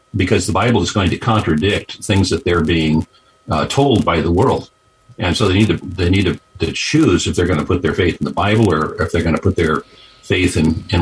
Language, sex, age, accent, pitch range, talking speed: English, male, 50-69, American, 85-110 Hz, 250 wpm